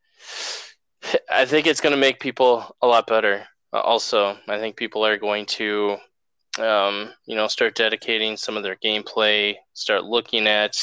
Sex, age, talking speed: male, 20-39, 160 wpm